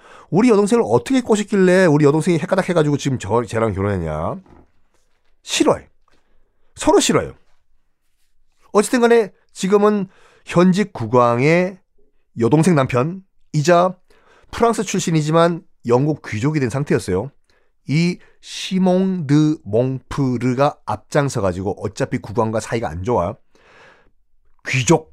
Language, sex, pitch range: Korean, male, 115-180 Hz